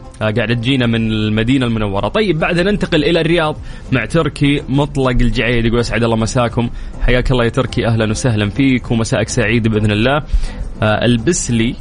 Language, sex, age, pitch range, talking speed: English, male, 20-39, 115-145 Hz, 155 wpm